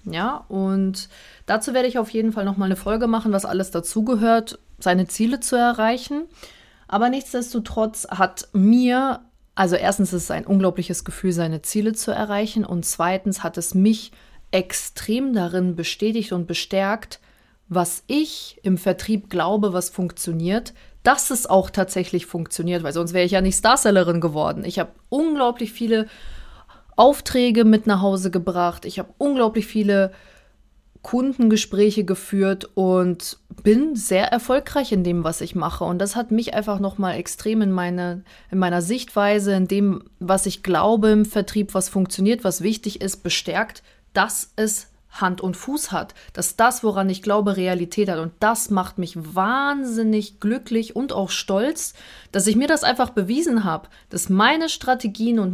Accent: German